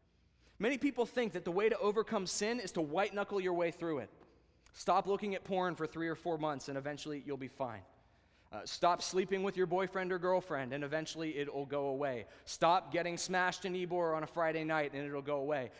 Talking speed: 215 wpm